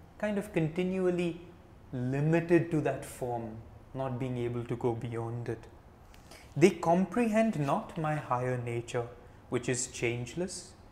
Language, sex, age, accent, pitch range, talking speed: English, male, 20-39, Indian, 110-150 Hz, 125 wpm